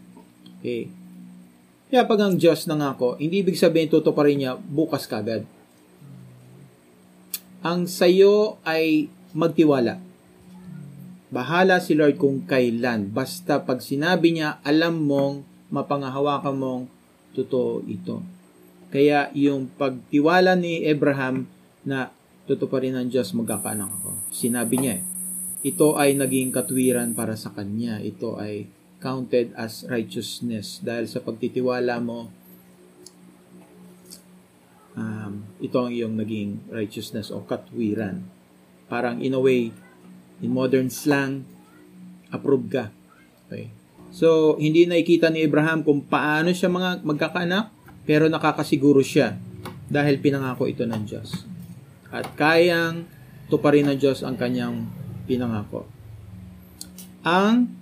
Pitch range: 100-155 Hz